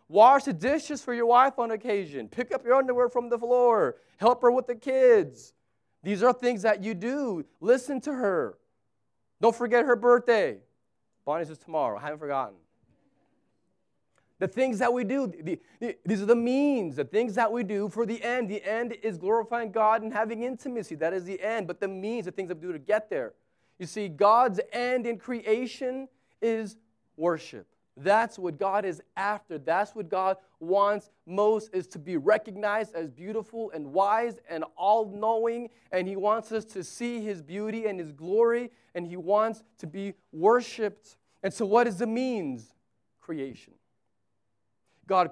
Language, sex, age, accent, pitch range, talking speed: English, male, 30-49, American, 165-235 Hz, 175 wpm